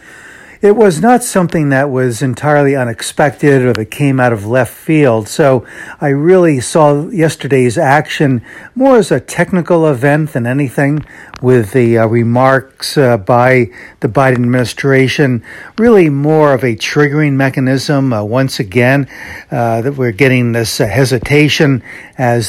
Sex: male